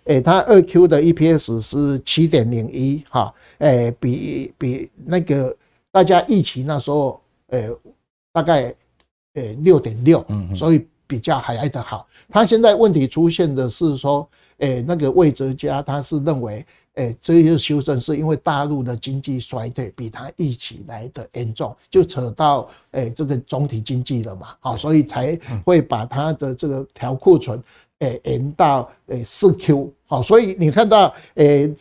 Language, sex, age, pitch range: Chinese, male, 60-79, 125-170 Hz